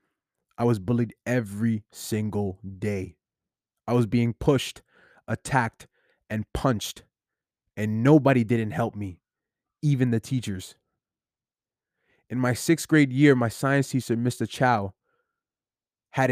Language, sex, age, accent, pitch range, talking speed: English, male, 20-39, American, 110-135 Hz, 120 wpm